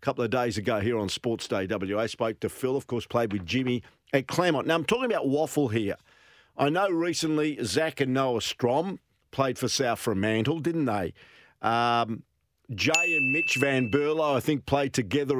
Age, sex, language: 50-69, male, English